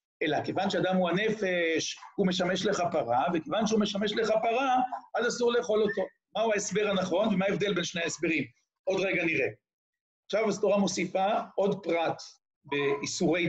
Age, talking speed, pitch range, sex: 50-69, 155 wpm, 175-220 Hz, male